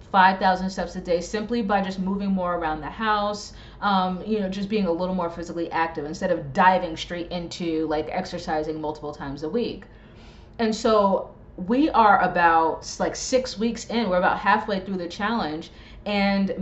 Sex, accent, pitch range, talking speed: female, American, 170-210 Hz, 180 wpm